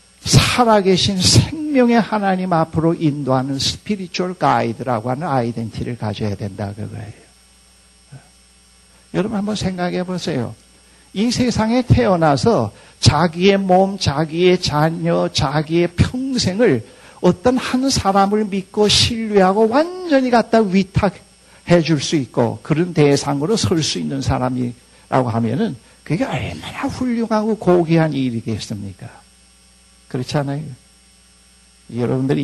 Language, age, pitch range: Korean, 60-79, 110-165 Hz